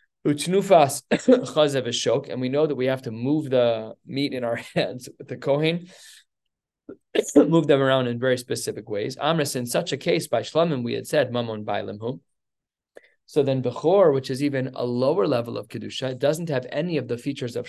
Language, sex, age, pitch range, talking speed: English, male, 20-39, 120-150 Hz, 175 wpm